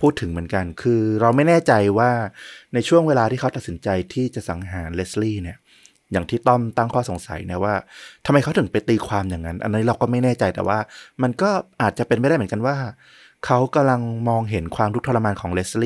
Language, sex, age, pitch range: Thai, male, 20-39, 105-130 Hz